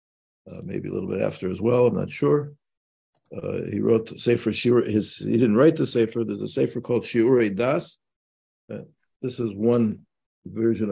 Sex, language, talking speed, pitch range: male, English, 175 wpm, 105-135 Hz